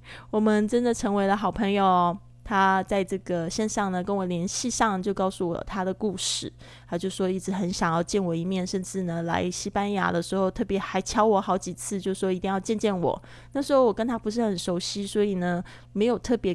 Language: Chinese